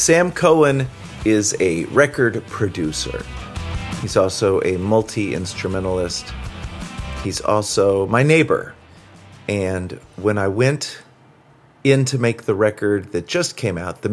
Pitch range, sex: 100-130 Hz, male